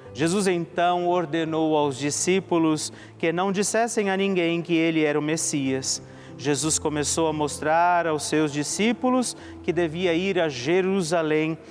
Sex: male